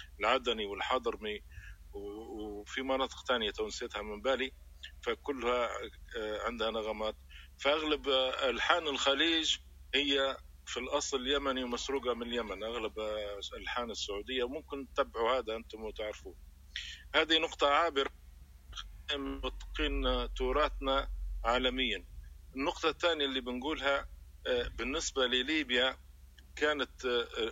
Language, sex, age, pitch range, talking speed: Arabic, male, 50-69, 100-135 Hz, 90 wpm